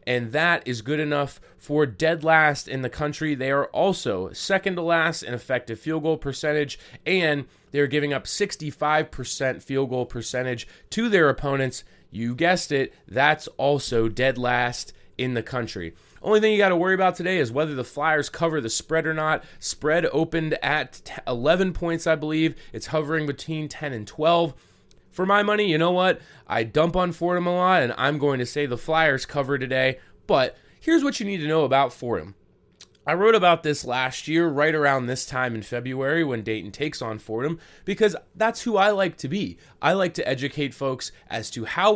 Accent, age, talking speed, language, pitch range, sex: American, 20-39, 195 wpm, English, 125-165 Hz, male